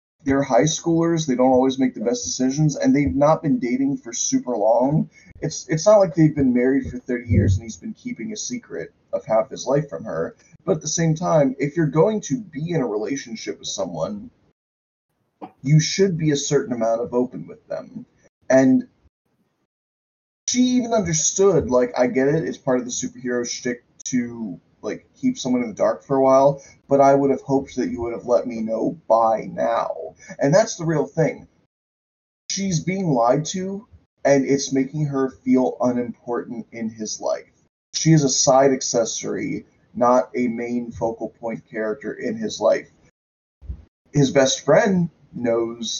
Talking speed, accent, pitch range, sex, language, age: 180 wpm, American, 120-160 Hz, male, English, 20-39